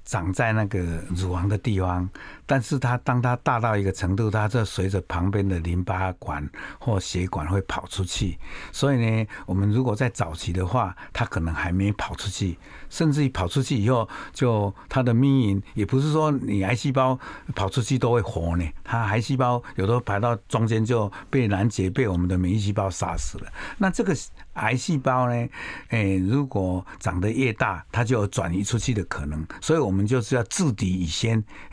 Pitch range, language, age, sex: 95-125 Hz, Chinese, 60-79, male